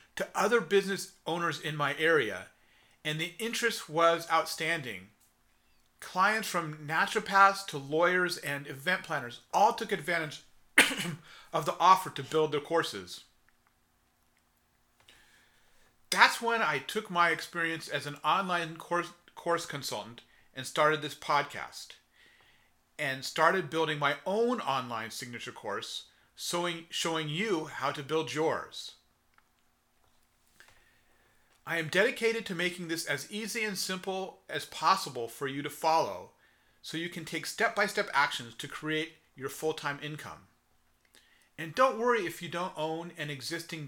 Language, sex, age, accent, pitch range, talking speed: English, male, 40-59, American, 145-185 Hz, 135 wpm